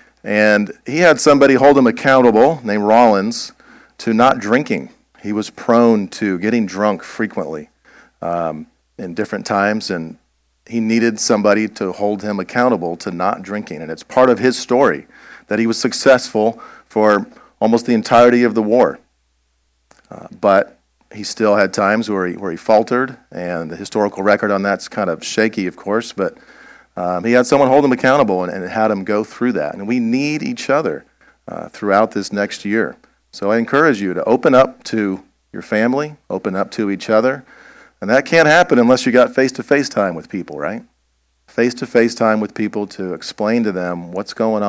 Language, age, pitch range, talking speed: English, 40-59, 95-125 Hz, 180 wpm